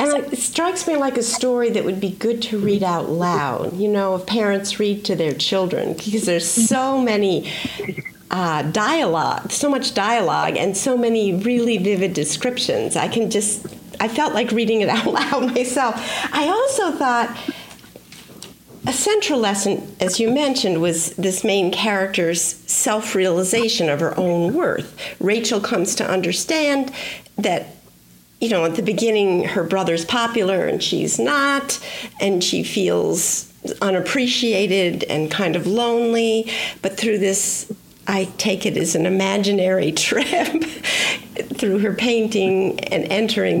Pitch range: 195-260 Hz